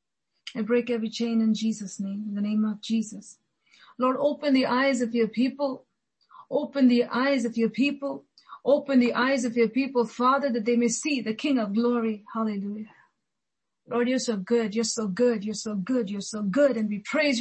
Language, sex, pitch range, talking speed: English, female, 200-235 Hz, 195 wpm